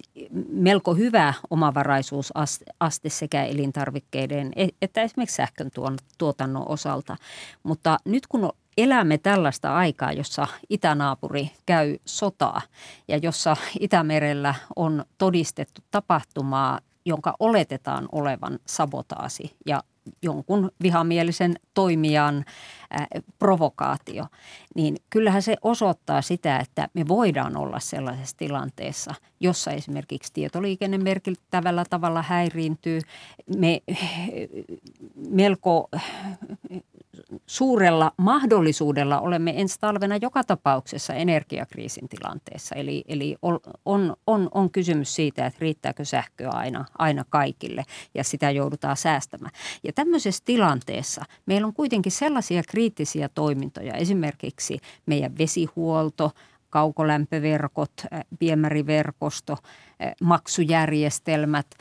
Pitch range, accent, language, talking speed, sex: 150-190 Hz, native, Finnish, 90 wpm, female